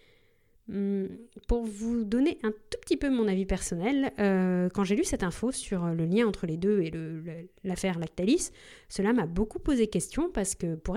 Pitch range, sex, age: 185-240 Hz, female, 20-39